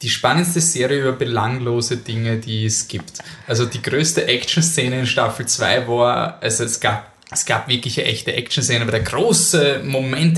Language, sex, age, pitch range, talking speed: German, male, 20-39, 115-145 Hz, 170 wpm